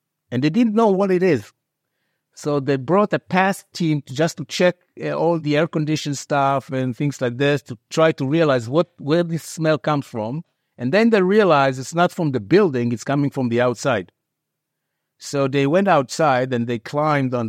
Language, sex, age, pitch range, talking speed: English, male, 60-79, 115-150 Hz, 195 wpm